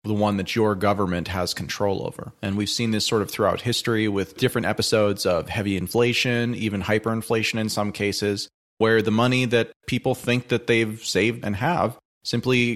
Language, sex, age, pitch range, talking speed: English, male, 30-49, 100-120 Hz, 185 wpm